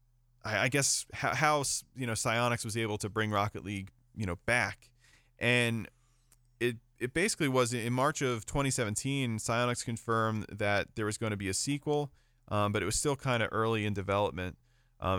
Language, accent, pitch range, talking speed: English, American, 100-120 Hz, 180 wpm